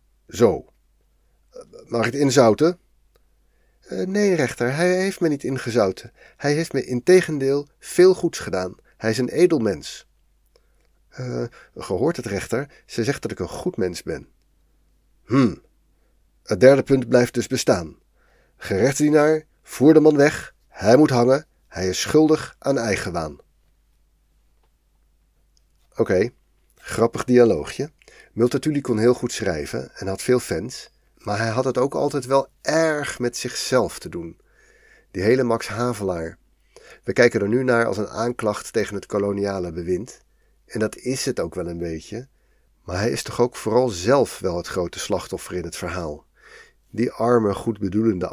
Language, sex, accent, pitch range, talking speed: Dutch, male, Dutch, 95-130 Hz, 155 wpm